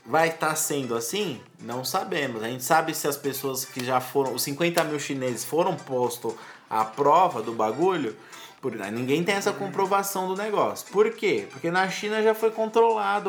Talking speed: 175 wpm